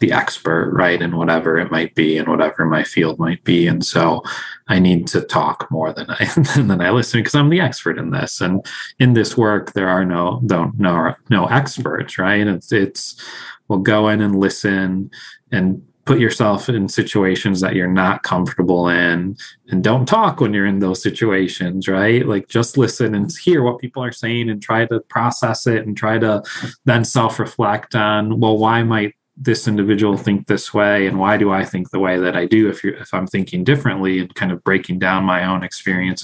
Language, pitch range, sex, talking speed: English, 90-110 Hz, male, 200 wpm